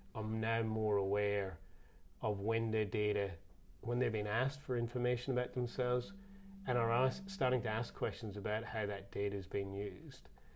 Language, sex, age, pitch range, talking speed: English, male, 30-49, 100-115 Hz, 160 wpm